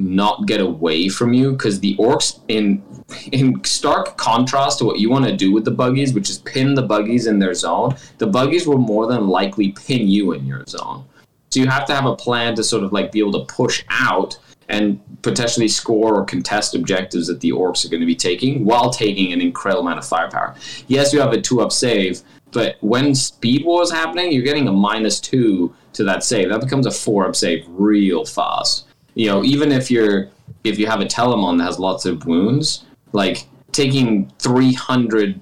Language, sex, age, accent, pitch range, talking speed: English, male, 20-39, American, 105-135 Hz, 210 wpm